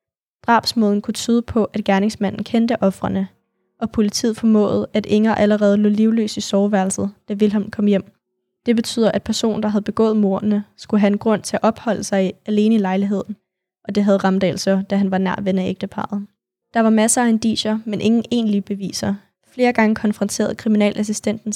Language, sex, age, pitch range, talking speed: Danish, female, 20-39, 205-225 Hz, 185 wpm